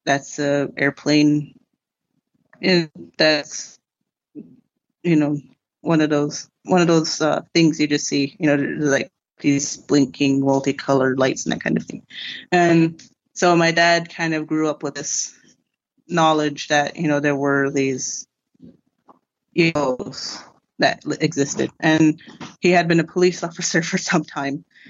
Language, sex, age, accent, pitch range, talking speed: English, female, 30-49, American, 145-165 Hz, 145 wpm